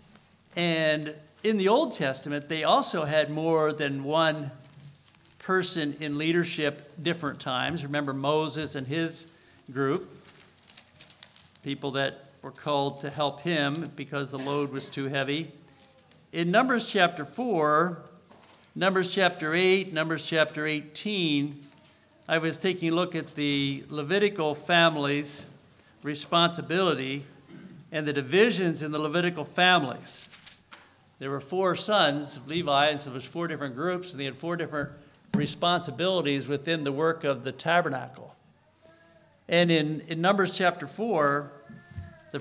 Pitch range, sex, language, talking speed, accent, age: 145-180 Hz, male, English, 130 wpm, American, 50-69